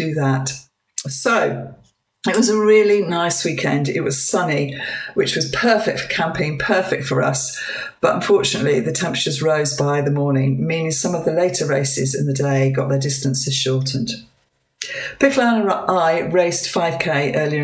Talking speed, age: 155 wpm, 50-69